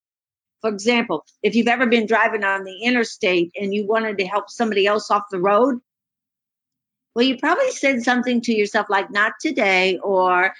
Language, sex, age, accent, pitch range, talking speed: English, female, 50-69, American, 190-245 Hz, 175 wpm